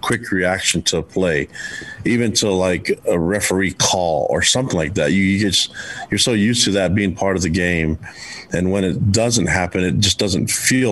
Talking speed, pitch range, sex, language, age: 200 wpm, 85-105 Hz, male, English, 40-59